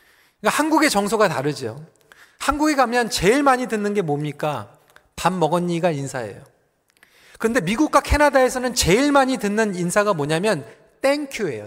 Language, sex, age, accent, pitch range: Korean, male, 40-59, native, 175-265 Hz